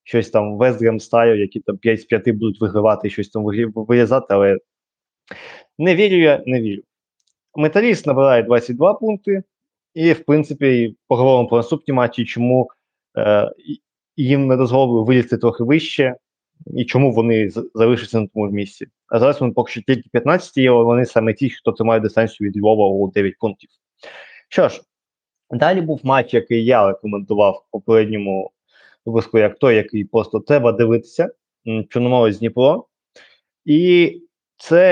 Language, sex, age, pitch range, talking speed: Ukrainian, male, 20-39, 115-150 Hz, 150 wpm